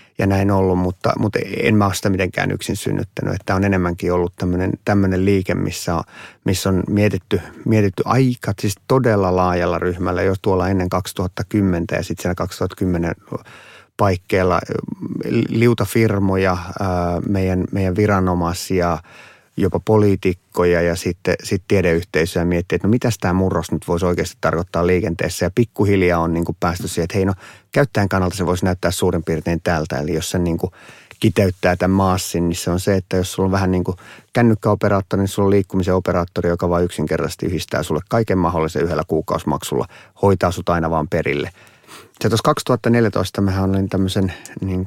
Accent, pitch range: native, 85-100 Hz